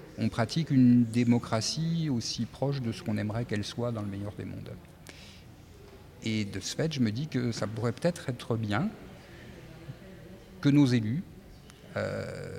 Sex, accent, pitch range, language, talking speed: male, French, 105-135 Hz, French, 160 wpm